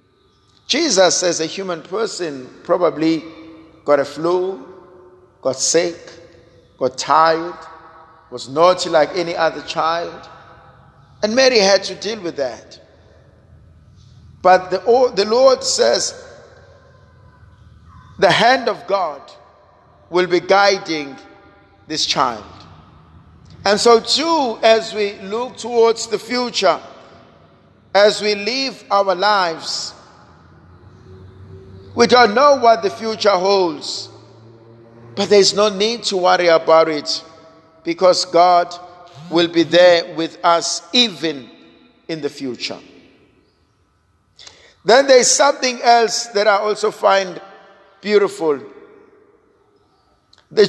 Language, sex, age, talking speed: English, male, 50-69, 105 wpm